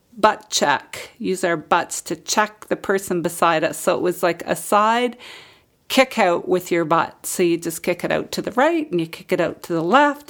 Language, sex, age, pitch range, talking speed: English, female, 40-59, 165-205 Hz, 225 wpm